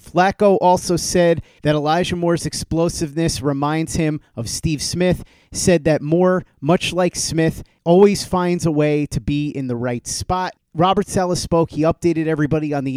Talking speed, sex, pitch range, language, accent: 165 wpm, male, 140-170 Hz, English, American